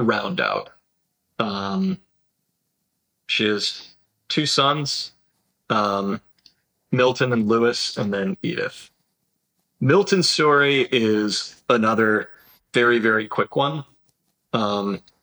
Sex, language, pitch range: male, English, 105-135 Hz